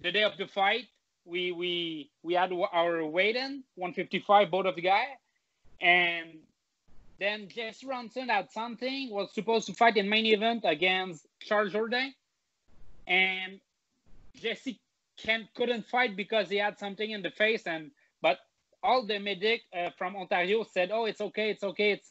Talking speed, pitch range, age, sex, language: 170 wpm, 175-220 Hz, 30-49, male, English